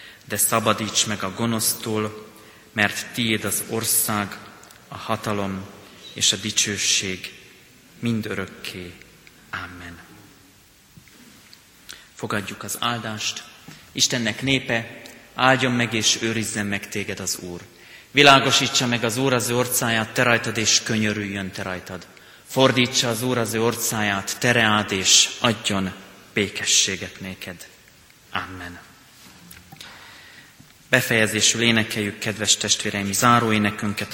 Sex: male